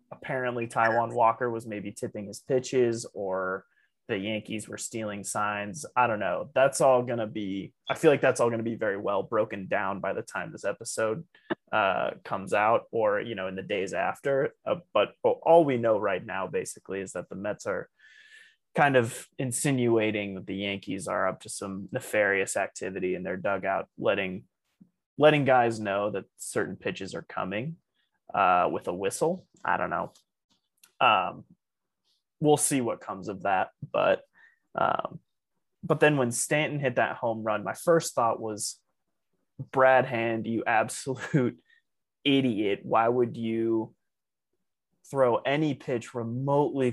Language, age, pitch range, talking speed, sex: English, 20-39, 110-140 Hz, 160 wpm, male